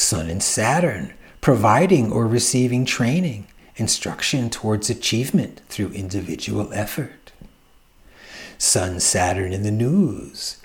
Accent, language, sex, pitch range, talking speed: American, English, male, 105-165 Hz, 100 wpm